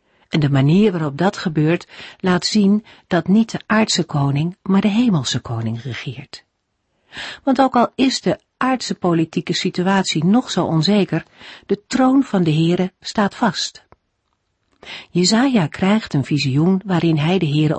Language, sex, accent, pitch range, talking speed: Dutch, female, Dutch, 145-205 Hz, 150 wpm